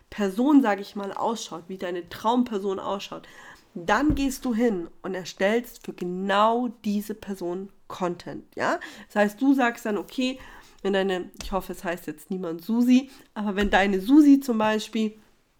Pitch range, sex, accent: 190-230 Hz, female, German